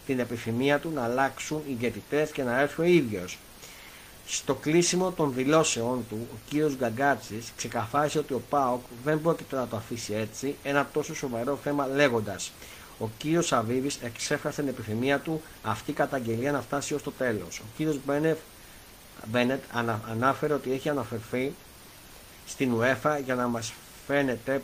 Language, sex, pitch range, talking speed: Greek, male, 115-145 Hz, 155 wpm